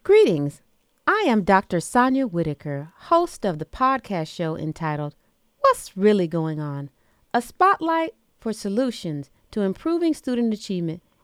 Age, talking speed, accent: 40-59, 130 wpm, American